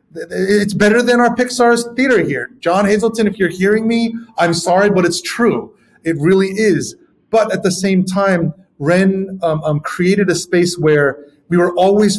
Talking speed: 175 wpm